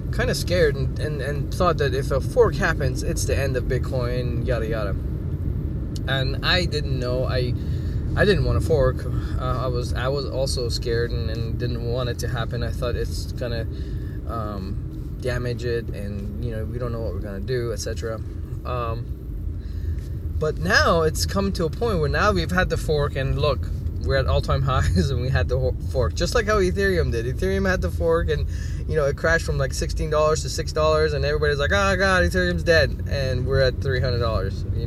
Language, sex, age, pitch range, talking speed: English, male, 20-39, 90-120 Hz, 205 wpm